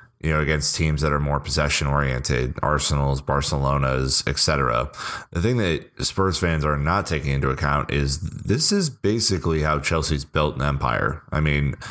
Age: 30-49